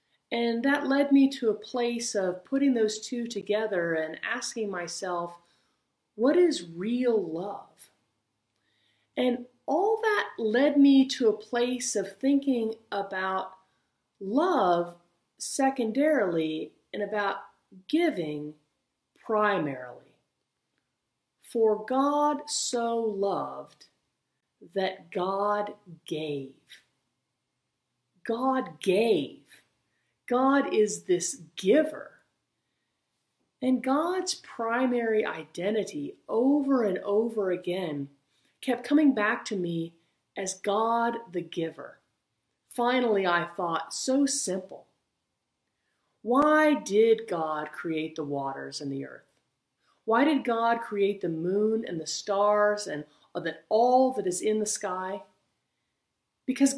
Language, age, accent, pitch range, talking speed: English, 40-59, American, 175-250 Hz, 105 wpm